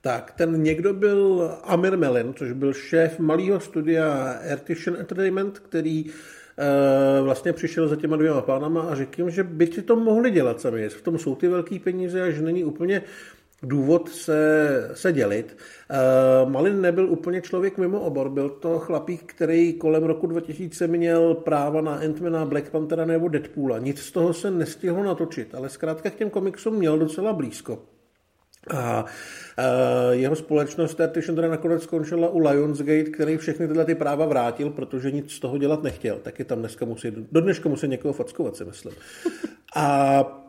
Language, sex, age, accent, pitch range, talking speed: Czech, male, 50-69, native, 145-175 Hz, 170 wpm